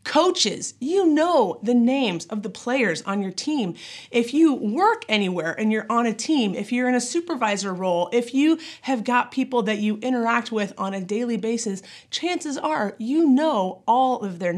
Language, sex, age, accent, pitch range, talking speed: English, female, 30-49, American, 210-285 Hz, 190 wpm